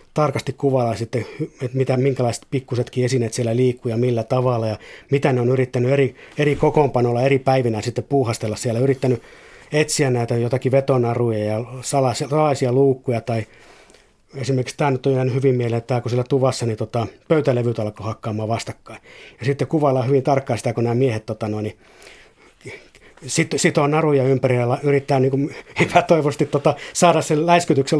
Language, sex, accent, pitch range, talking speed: Finnish, male, native, 120-140 Hz, 160 wpm